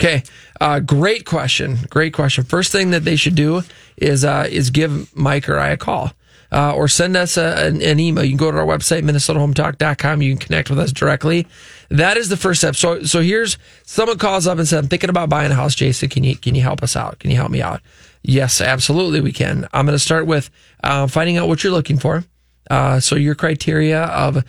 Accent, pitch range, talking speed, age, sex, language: American, 140-165 Hz, 235 wpm, 20-39, male, English